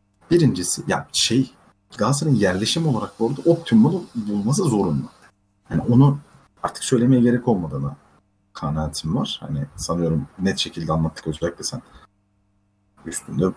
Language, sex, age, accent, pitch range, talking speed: Turkish, male, 40-59, native, 95-140 Hz, 125 wpm